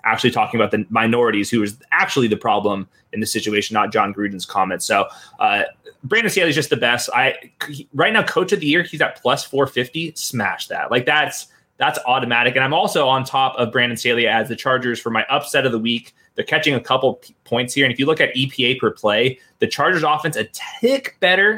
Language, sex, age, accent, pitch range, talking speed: English, male, 20-39, American, 115-150 Hz, 225 wpm